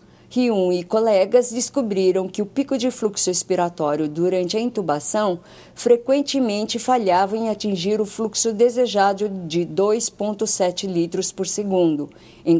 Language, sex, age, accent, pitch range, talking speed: Portuguese, female, 50-69, Brazilian, 180-230 Hz, 125 wpm